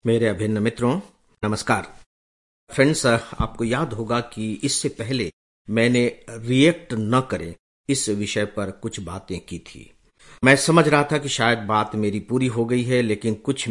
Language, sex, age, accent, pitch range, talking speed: English, male, 50-69, Indian, 100-125 Hz, 160 wpm